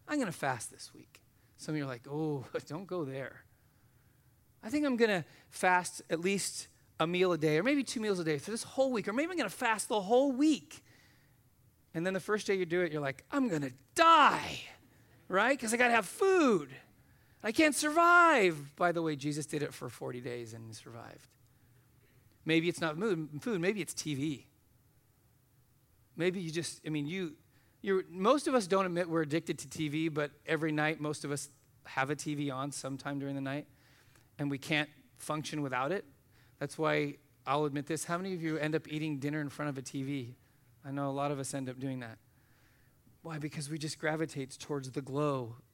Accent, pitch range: American, 130-180 Hz